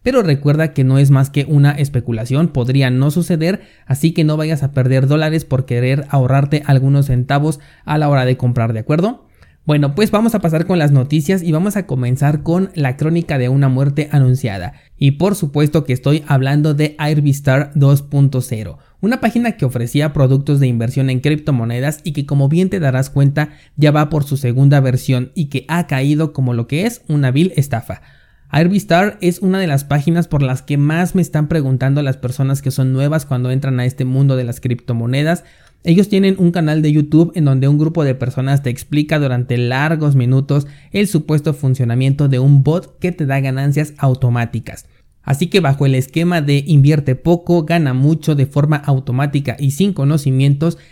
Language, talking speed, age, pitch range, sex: Spanish, 190 wpm, 30-49, 130-160 Hz, male